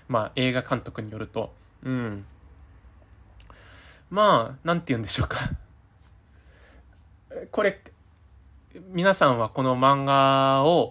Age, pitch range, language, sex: 20-39, 90-135 Hz, Japanese, male